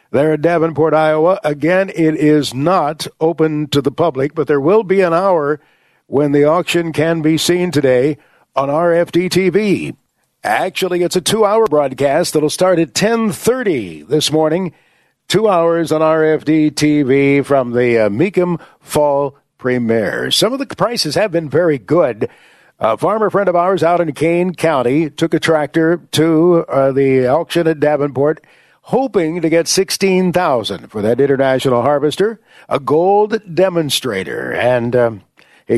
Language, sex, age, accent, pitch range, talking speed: English, male, 50-69, American, 140-175 Hz, 150 wpm